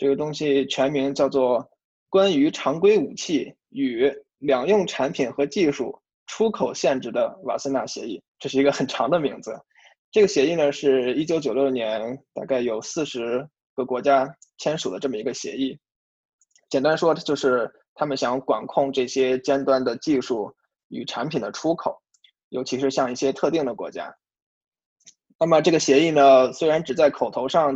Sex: male